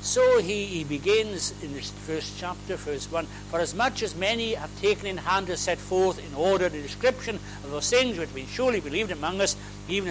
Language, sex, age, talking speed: English, male, 60-79, 210 wpm